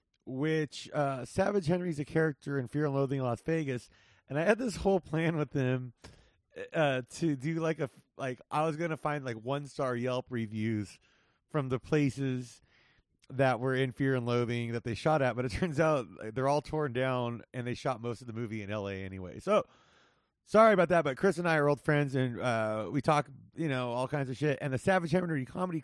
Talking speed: 225 wpm